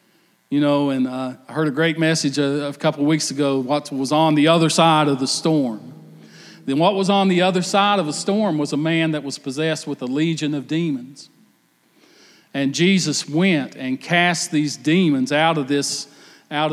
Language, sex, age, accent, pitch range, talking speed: English, male, 40-59, American, 145-175 Hz, 200 wpm